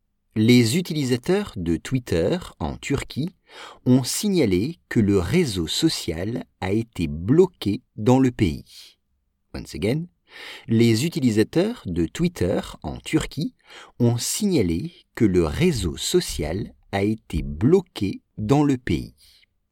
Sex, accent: male, French